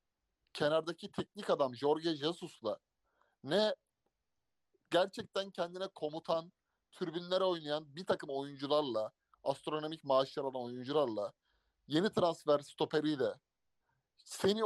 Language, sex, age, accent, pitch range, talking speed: Turkish, male, 30-49, native, 140-190 Hz, 90 wpm